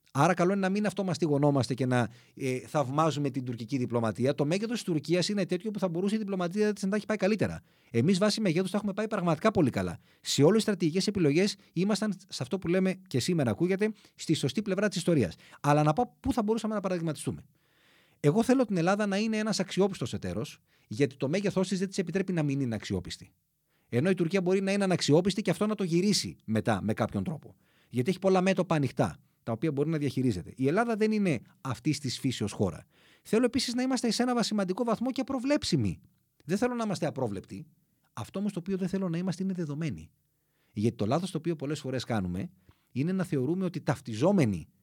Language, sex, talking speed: Greek, male, 205 wpm